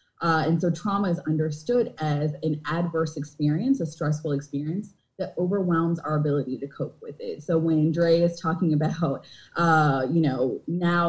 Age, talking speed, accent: 20-39, 170 wpm, American